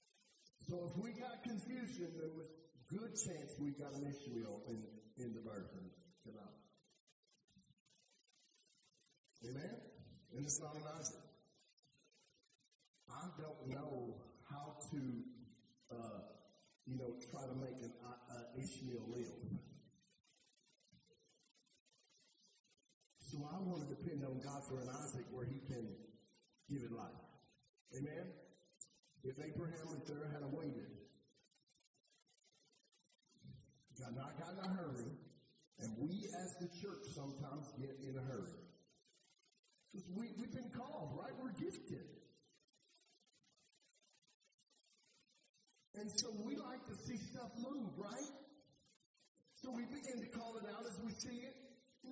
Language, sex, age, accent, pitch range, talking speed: English, male, 50-69, American, 130-220 Hz, 125 wpm